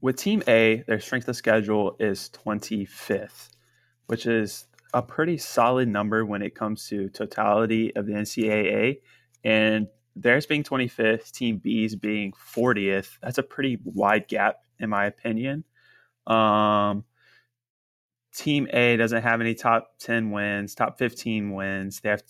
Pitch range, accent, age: 105-120 Hz, American, 20-39